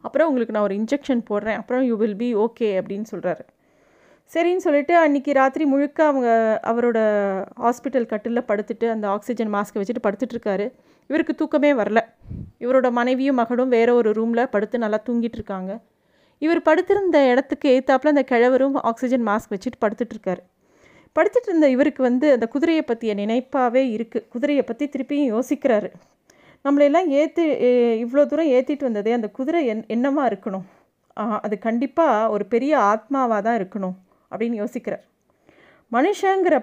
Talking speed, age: 140 wpm, 30-49